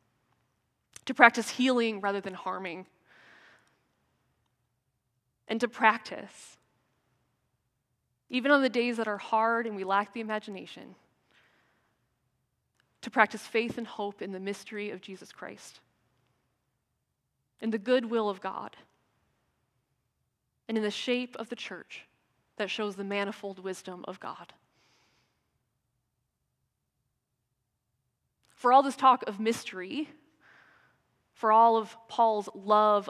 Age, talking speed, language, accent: 20-39, 110 wpm, English, American